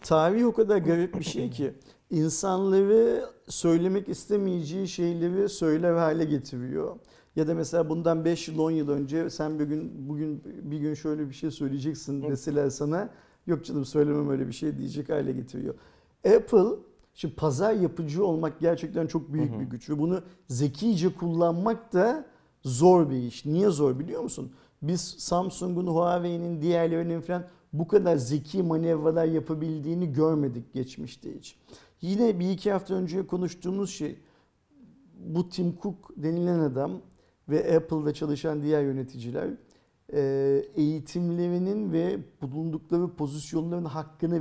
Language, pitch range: Turkish, 150-180 Hz